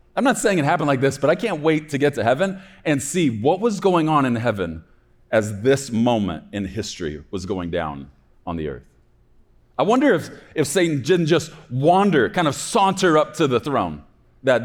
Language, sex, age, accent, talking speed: English, male, 40-59, American, 205 wpm